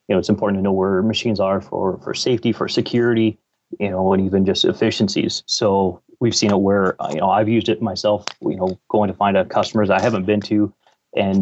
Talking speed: 230 wpm